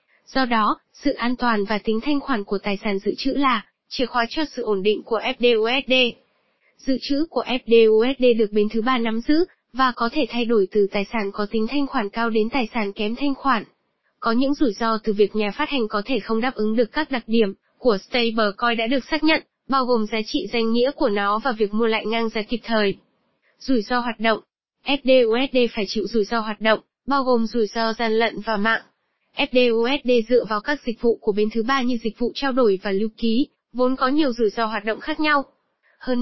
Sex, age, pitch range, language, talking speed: female, 10-29, 220-265 Hz, Vietnamese, 230 wpm